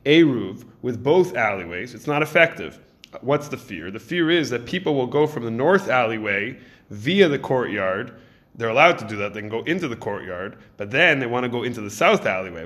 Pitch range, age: 110-140 Hz, 20-39